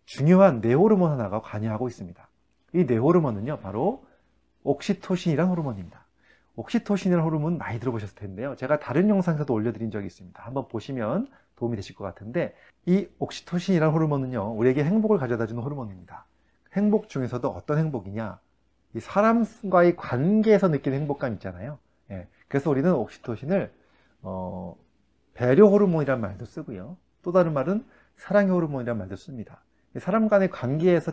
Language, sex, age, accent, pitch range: Korean, male, 30-49, native, 115-180 Hz